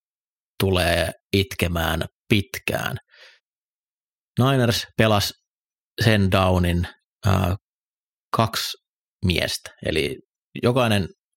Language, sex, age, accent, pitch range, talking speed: Finnish, male, 30-49, native, 95-120 Hz, 60 wpm